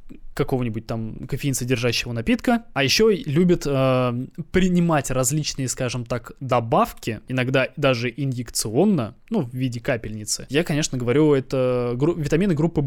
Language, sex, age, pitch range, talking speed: Russian, male, 20-39, 125-175 Hz, 120 wpm